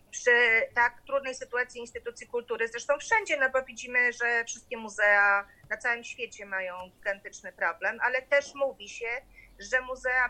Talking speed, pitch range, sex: 150 wpm, 220-255 Hz, female